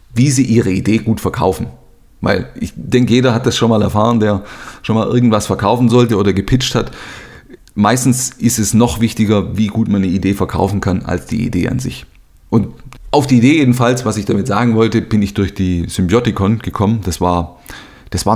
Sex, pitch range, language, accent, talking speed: male, 95-120 Hz, German, German, 200 wpm